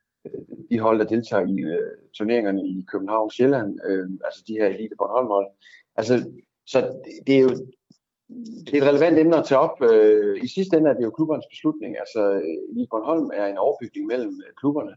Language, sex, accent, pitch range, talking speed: Danish, male, native, 105-150 Hz, 195 wpm